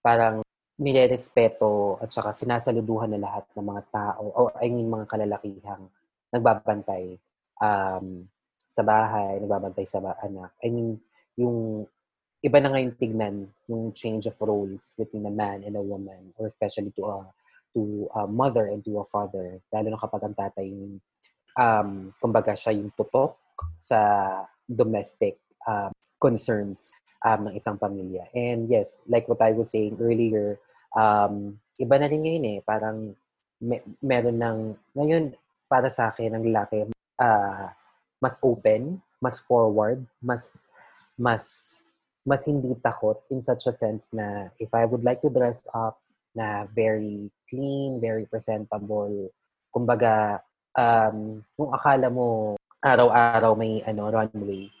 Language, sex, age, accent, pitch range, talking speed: Filipino, female, 20-39, native, 105-120 Hz, 140 wpm